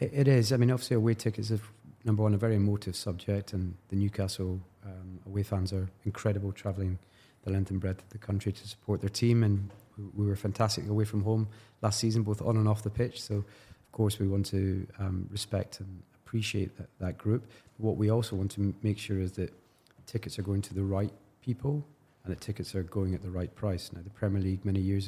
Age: 30-49